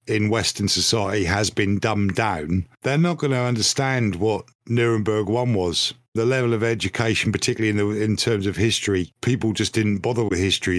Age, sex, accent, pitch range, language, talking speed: 50-69, male, British, 105-125 Hz, English, 185 wpm